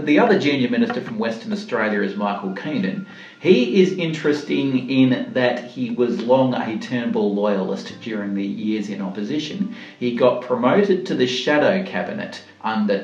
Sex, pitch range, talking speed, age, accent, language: male, 100-130 Hz, 155 wpm, 40-59, Australian, English